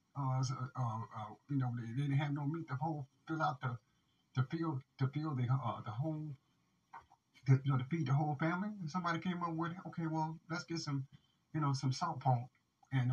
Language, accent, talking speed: English, American, 225 wpm